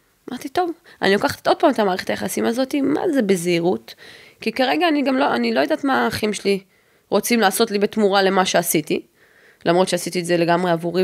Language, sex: Hebrew, female